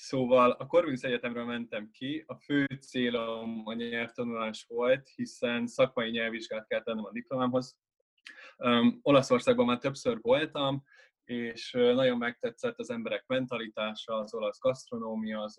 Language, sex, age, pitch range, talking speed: Hungarian, male, 20-39, 110-145 Hz, 130 wpm